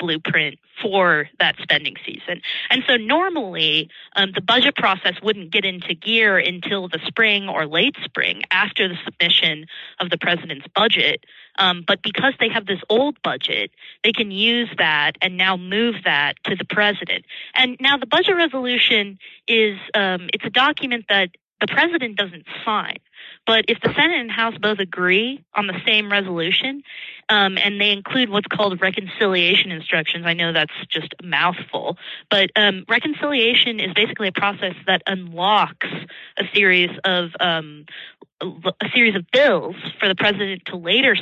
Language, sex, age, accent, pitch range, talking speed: English, female, 20-39, American, 180-225 Hz, 160 wpm